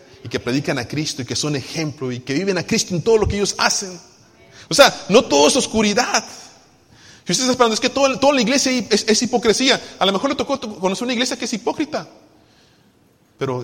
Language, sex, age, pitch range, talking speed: Spanish, male, 30-49, 135-215 Hz, 220 wpm